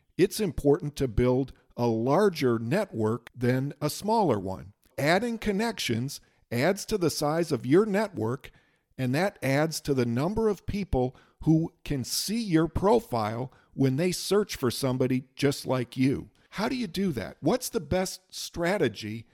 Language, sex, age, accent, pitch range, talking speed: English, male, 50-69, American, 125-175 Hz, 155 wpm